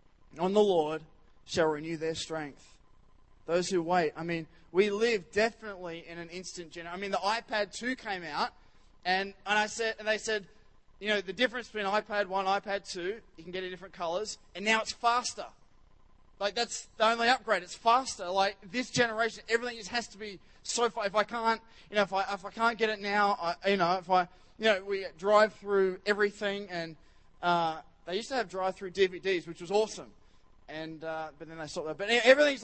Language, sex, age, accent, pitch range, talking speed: English, male, 20-39, Australian, 190-225 Hz, 210 wpm